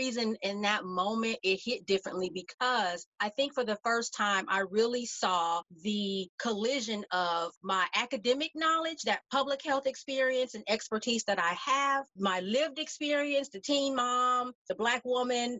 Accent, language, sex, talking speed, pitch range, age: American, English, female, 160 wpm, 195-270 Hz, 40-59